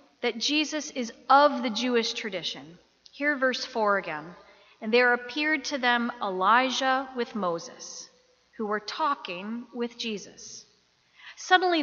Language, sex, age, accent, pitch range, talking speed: English, female, 40-59, American, 215-270 Hz, 125 wpm